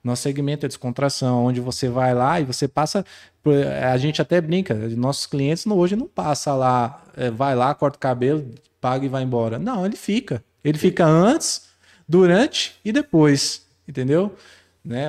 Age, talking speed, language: 20-39, 165 wpm, Portuguese